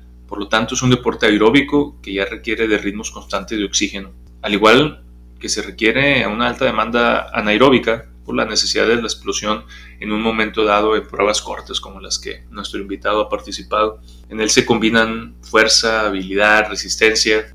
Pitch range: 105-125 Hz